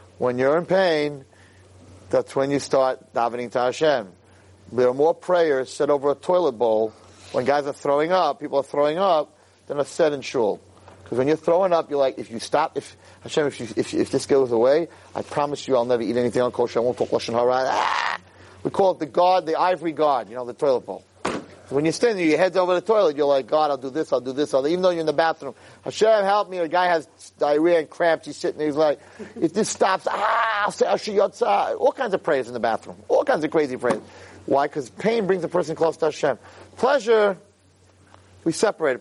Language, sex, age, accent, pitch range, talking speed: English, male, 40-59, American, 125-180 Hz, 235 wpm